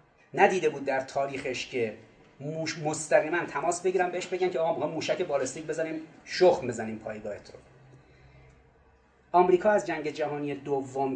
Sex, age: male, 30-49